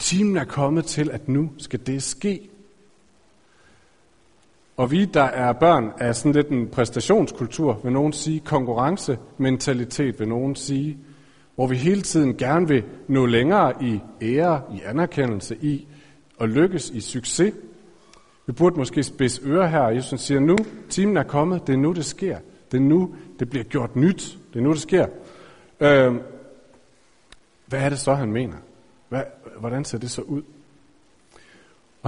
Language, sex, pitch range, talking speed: Danish, male, 125-155 Hz, 165 wpm